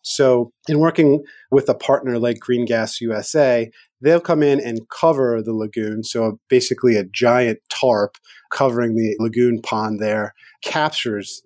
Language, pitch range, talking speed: English, 110-130 Hz, 145 wpm